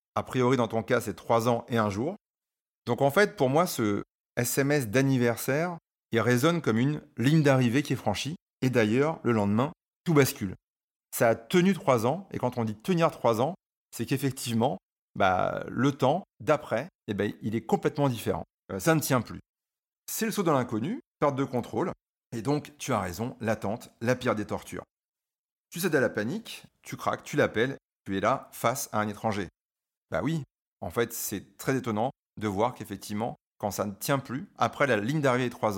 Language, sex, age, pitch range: French, male, 40-59, 110-140 Hz